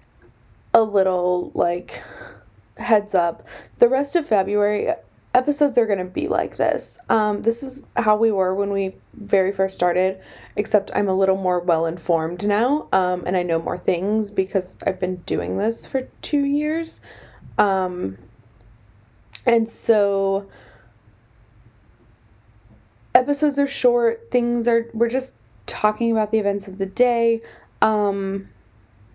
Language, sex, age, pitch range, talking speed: English, female, 20-39, 150-235 Hz, 135 wpm